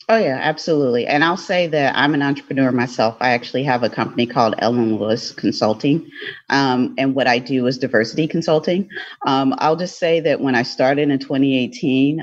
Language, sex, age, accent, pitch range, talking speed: English, female, 40-59, American, 125-155 Hz, 185 wpm